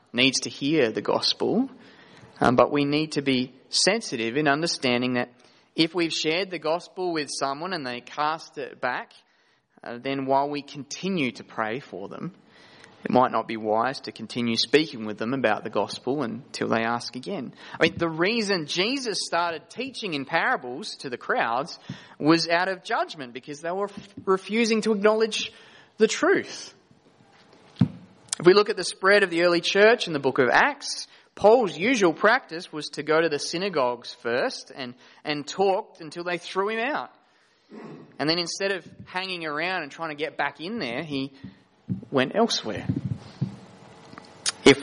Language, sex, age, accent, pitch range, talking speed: English, male, 20-39, Australian, 130-180 Hz, 170 wpm